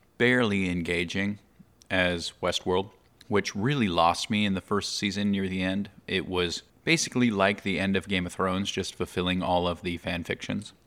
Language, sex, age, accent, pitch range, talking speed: English, male, 30-49, American, 85-100 Hz, 175 wpm